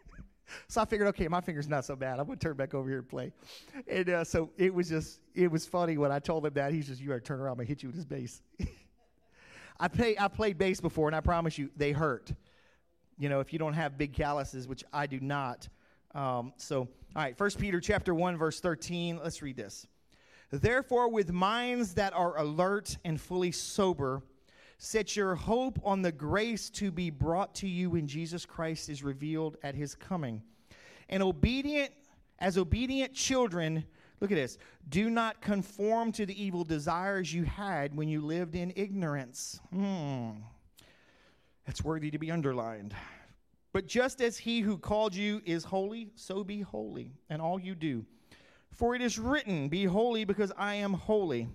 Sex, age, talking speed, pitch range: male, 40-59, 190 wpm, 145-200 Hz